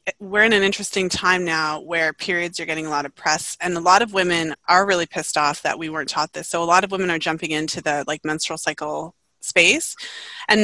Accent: American